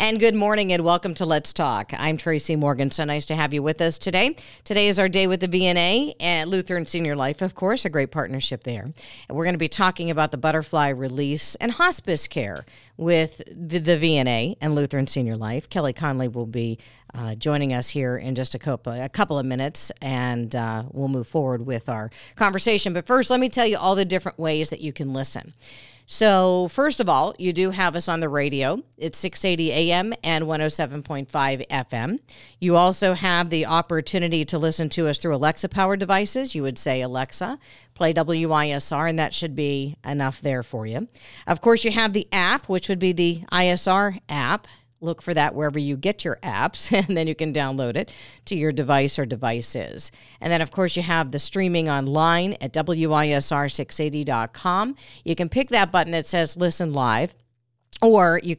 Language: English